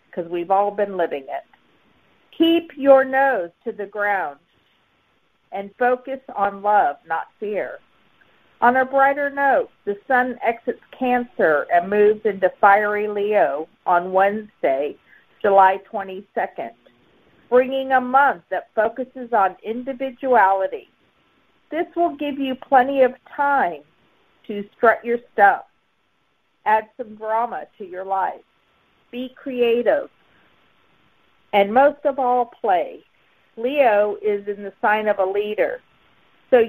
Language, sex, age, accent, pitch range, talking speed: English, female, 50-69, American, 200-265 Hz, 125 wpm